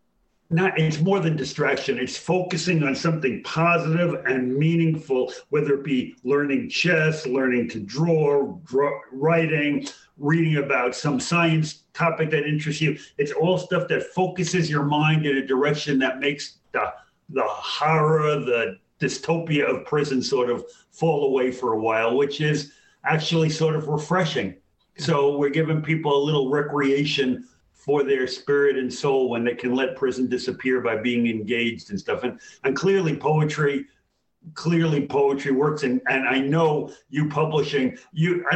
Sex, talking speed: male, 155 wpm